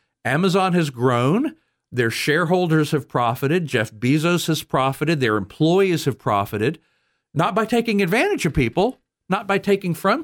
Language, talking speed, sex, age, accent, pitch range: English, 145 wpm, male, 50-69, American, 110-155 Hz